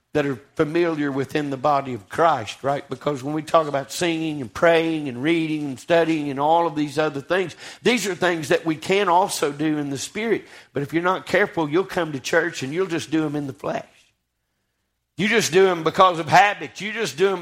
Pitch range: 130-175 Hz